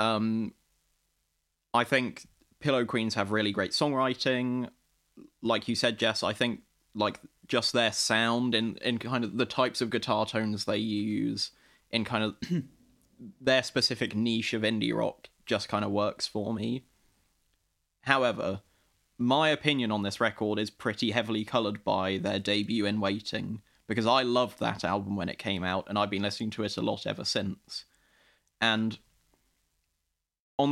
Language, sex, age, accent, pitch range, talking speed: English, male, 20-39, British, 100-120 Hz, 155 wpm